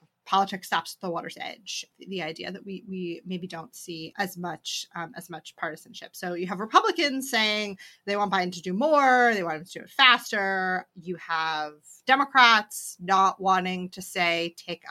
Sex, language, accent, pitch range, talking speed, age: female, English, American, 180-235 Hz, 185 wpm, 30-49